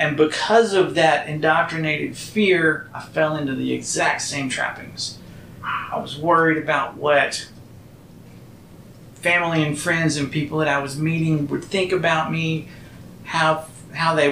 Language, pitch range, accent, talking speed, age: English, 145-170 Hz, American, 145 wpm, 40-59